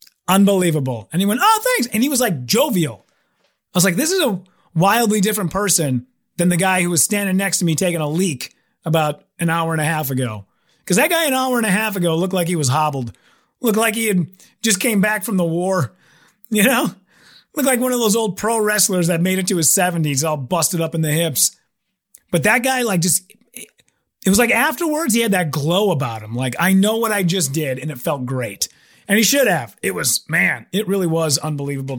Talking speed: 230 wpm